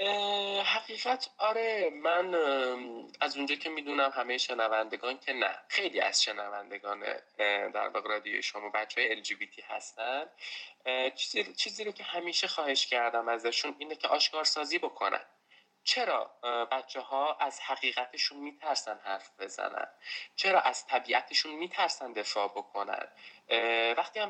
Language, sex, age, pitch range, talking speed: English, male, 20-39, 120-155 Hz, 120 wpm